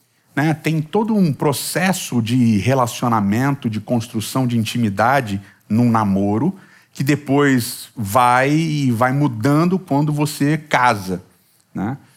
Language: Portuguese